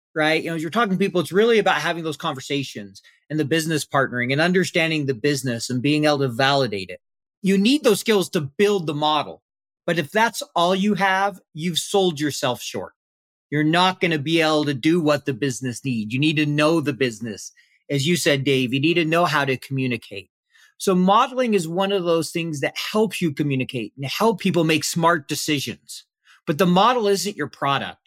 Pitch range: 145-200 Hz